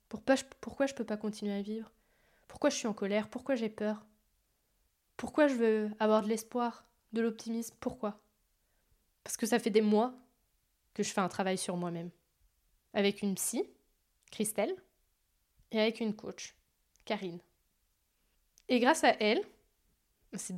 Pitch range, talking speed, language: 205-245 Hz, 155 wpm, French